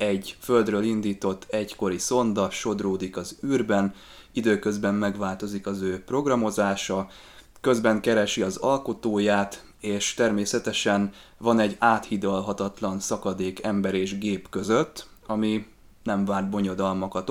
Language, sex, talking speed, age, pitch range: Hungarian, male, 110 wpm, 20-39, 100-110 Hz